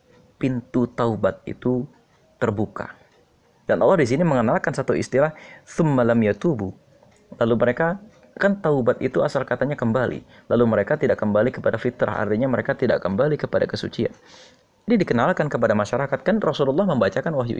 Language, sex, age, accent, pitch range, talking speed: Indonesian, male, 30-49, native, 120-160 Hz, 140 wpm